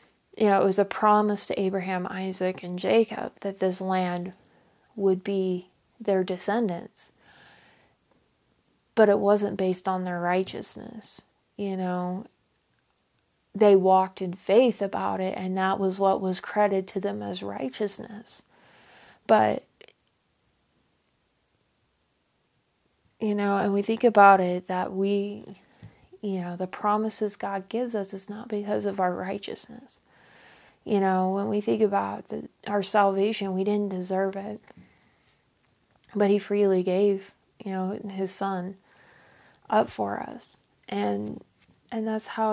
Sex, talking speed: female, 130 wpm